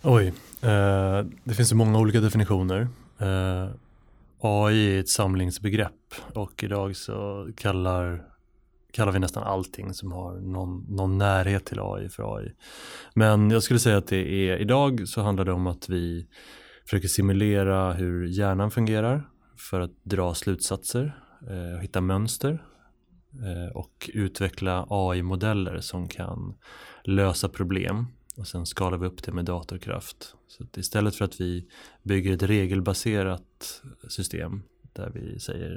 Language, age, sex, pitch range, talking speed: Swedish, 20-39, male, 95-105 Hz, 135 wpm